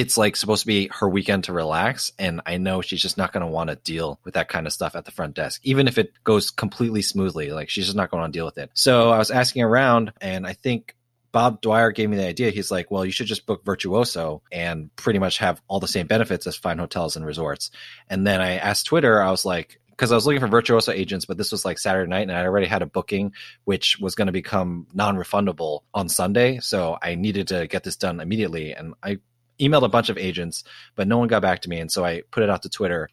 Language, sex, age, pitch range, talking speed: English, male, 30-49, 90-115 Hz, 265 wpm